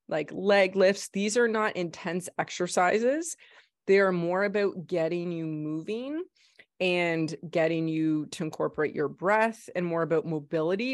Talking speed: 145 wpm